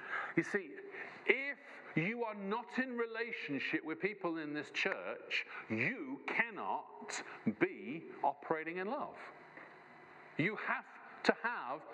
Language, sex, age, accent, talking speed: English, male, 50-69, British, 115 wpm